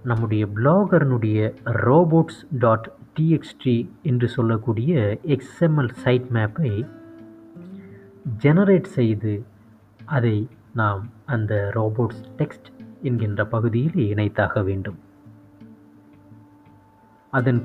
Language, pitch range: Tamil, 110-130 Hz